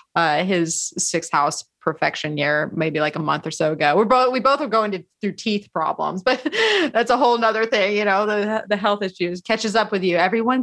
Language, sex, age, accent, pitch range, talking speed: English, female, 30-49, American, 175-225 Hz, 220 wpm